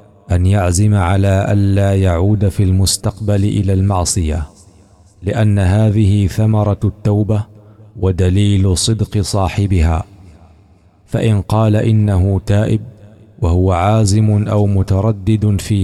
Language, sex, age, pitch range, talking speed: Arabic, male, 50-69, 95-105 Hz, 95 wpm